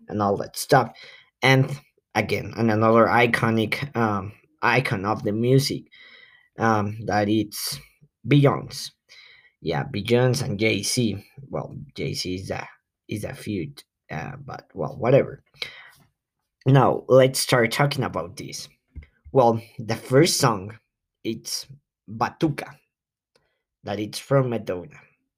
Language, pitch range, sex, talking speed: English, 110-140 Hz, male, 115 wpm